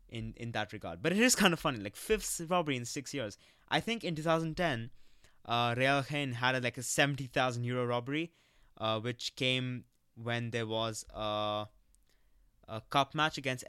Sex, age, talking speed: male, 20-39, 180 wpm